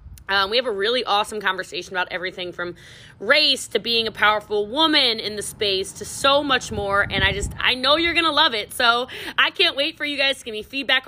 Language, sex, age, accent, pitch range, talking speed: English, female, 20-39, American, 195-265 Hz, 240 wpm